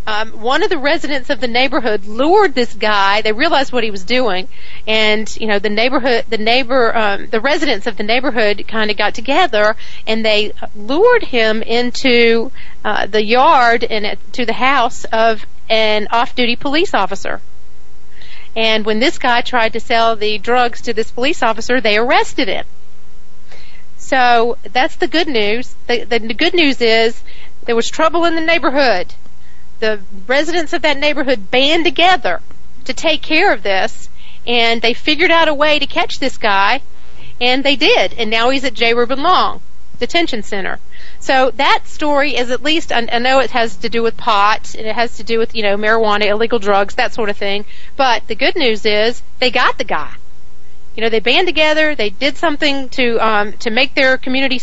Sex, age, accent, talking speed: female, 40-59, American, 185 wpm